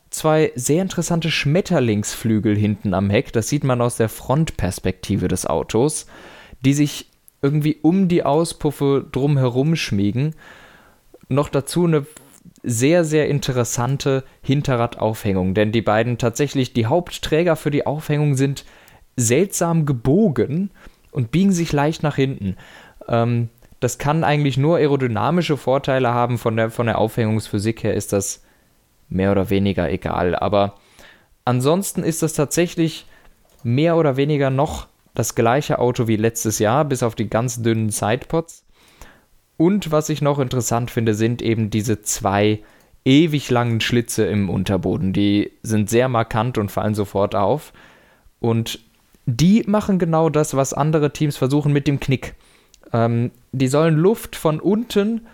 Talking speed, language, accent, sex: 140 wpm, German, German, male